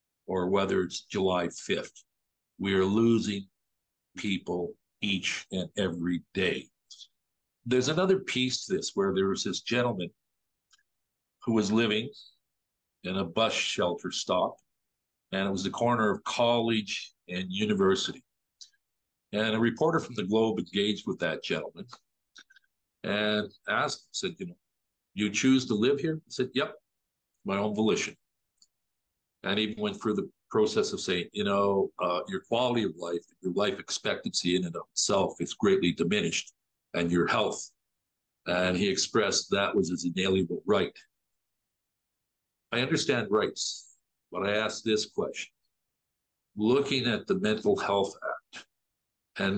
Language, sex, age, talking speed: English, male, 50-69, 140 wpm